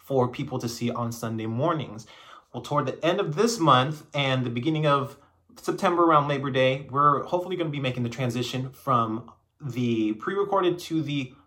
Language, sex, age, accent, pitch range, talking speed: English, male, 30-49, American, 125-150 Hz, 185 wpm